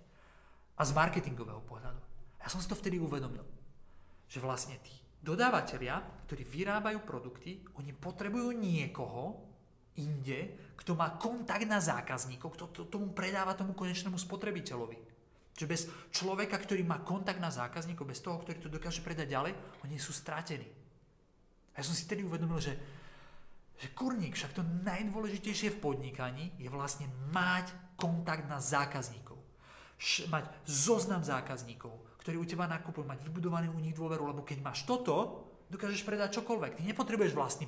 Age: 40-59